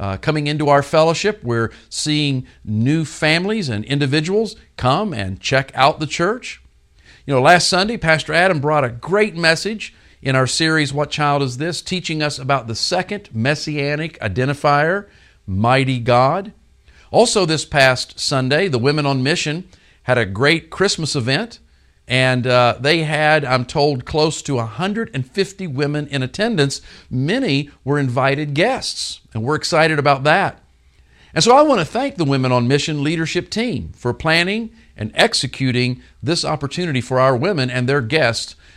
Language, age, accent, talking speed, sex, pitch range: English, 50-69, American, 155 wpm, male, 115-155 Hz